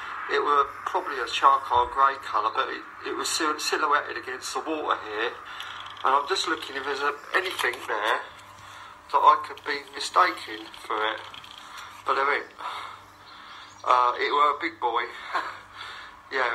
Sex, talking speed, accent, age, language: male, 150 wpm, British, 40-59, English